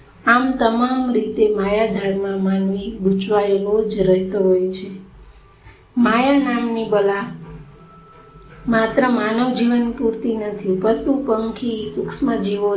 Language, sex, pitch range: Gujarati, female, 195-230 Hz